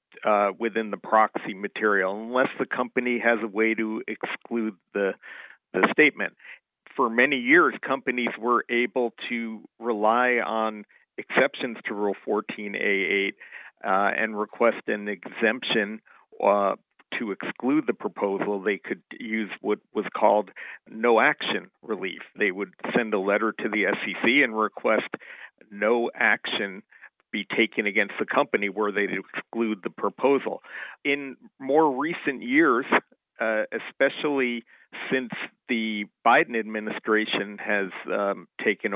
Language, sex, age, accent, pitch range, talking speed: English, male, 50-69, American, 105-120 Hz, 130 wpm